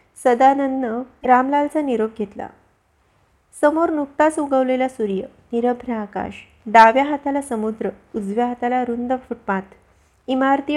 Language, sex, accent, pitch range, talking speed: Marathi, female, native, 230-290 Hz, 100 wpm